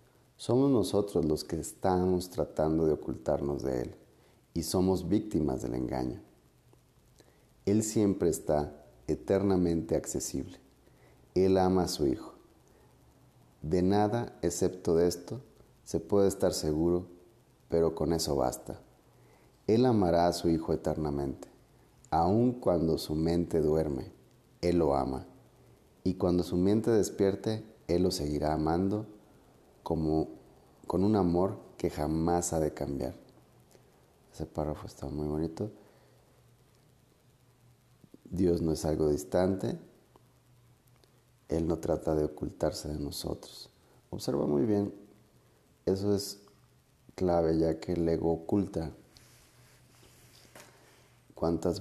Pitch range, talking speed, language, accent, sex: 75-100 Hz, 115 wpm, Spanish, Mexican, male